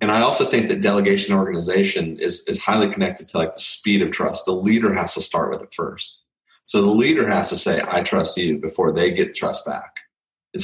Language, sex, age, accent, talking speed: English, male, 30-49, American, 225 wpm